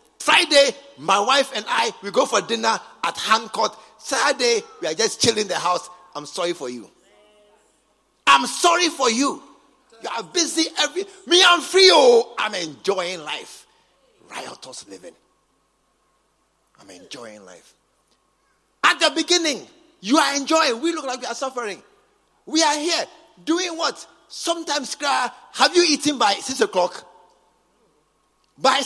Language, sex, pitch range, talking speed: English, male, 220-320 Hz, 140 wpm